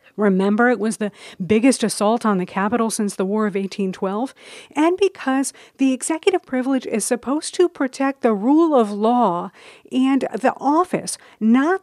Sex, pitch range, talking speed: female, 200-260 Hz, 155 wpm